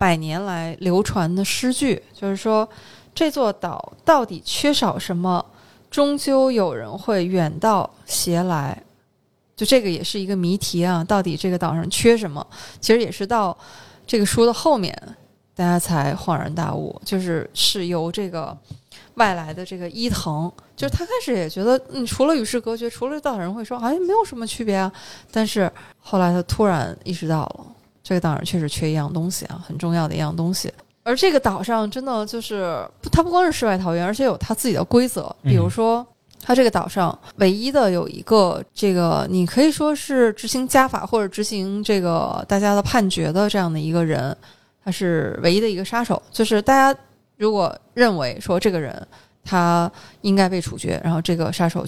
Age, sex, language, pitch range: 20-39, female, Chinese, 170-230 Hz